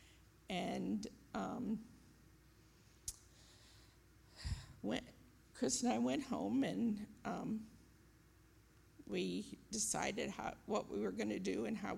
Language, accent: English, American